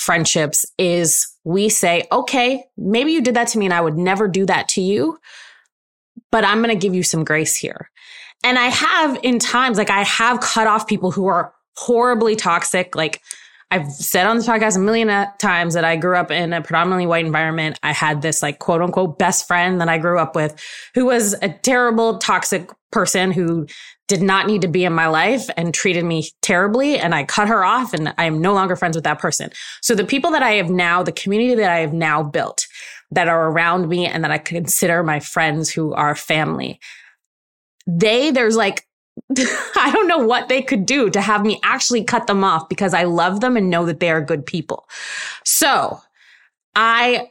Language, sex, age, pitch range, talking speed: English, female, 20-39, 170-225 Hz, 210 wpm